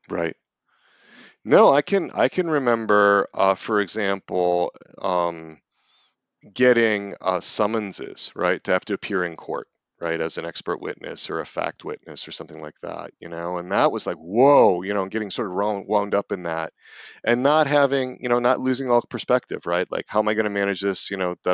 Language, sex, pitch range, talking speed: English, male, 90-115 Hz, 200 wpm